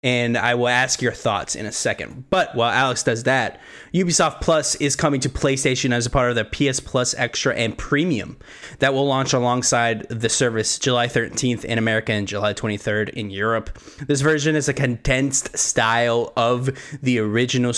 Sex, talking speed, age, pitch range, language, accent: male, 180 wpm, 20-39, 110-145 Hz, English, American